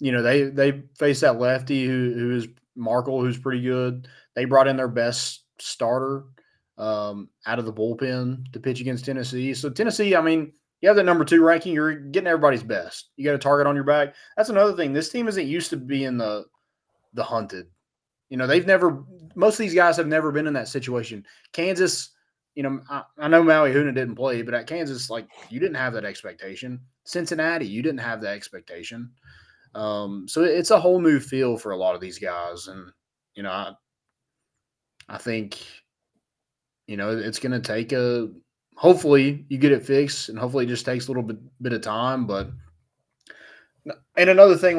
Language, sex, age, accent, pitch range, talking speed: English, male, 20-39, American, 120-150 Hz, 195 wpm